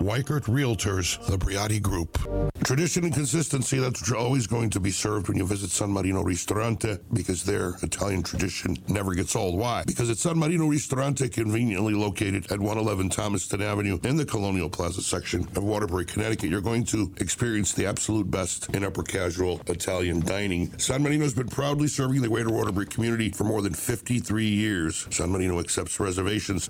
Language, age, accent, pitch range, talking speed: English, 60-79, American, 95-120 Hz, 175 wpm